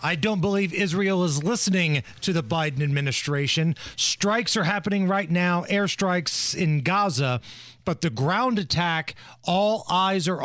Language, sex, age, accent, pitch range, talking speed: English, male, 40-59, American, 145-200 Hz, 145 wpm